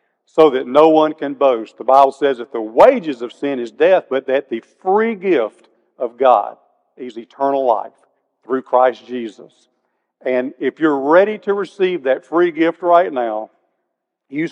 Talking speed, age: 170 wpm, 50-69